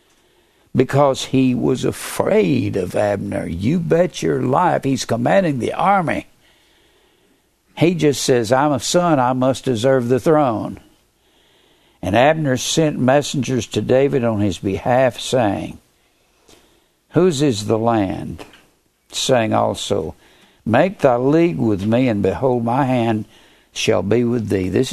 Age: 60-79